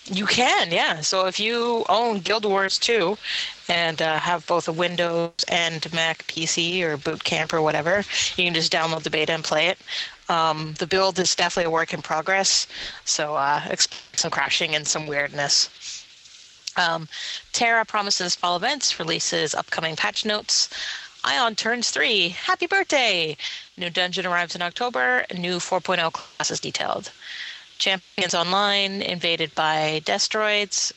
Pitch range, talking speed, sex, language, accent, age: 160-195 Hz, 150 wpm, female, English, American, 30-49